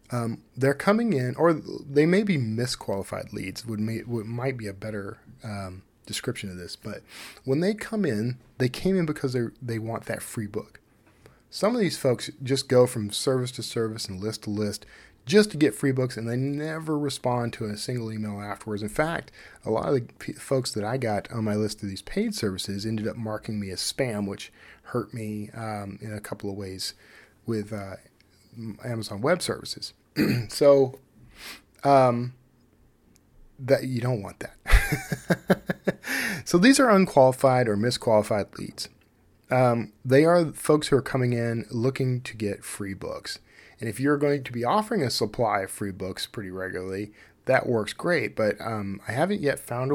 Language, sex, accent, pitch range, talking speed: English, male, American, 105-135 Hz, 185 wpm